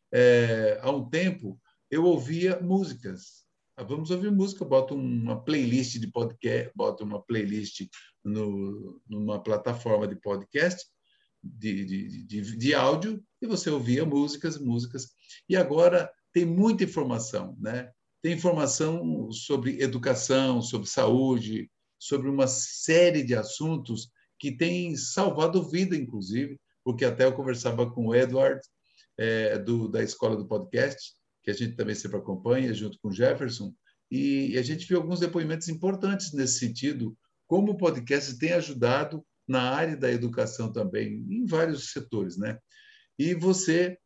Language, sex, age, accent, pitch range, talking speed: Portuguese, male, 50-69, Brazilian, 120-170 Hz, 140 wpm